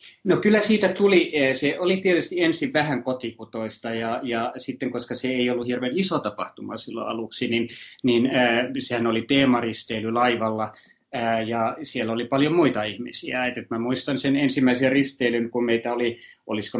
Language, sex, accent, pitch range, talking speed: Finnish, male, native, 115-130 Hz, 145 wpm